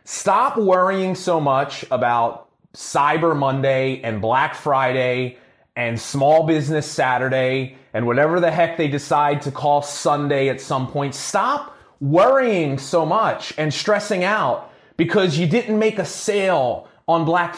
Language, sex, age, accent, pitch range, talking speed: English, male, 30-49, American, 155-230 Hz, 140 wpm